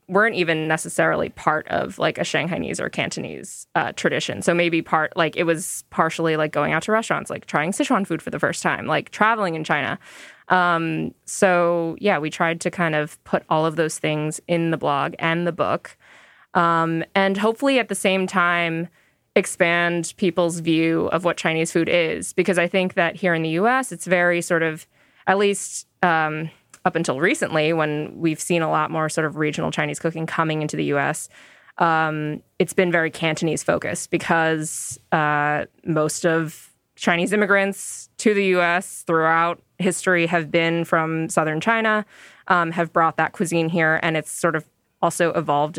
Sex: female